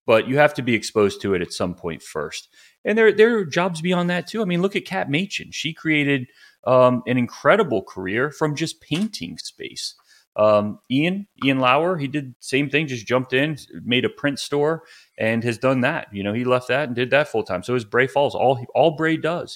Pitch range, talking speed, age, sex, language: 105-140 Hz, 225 wpm, 30-49, male, English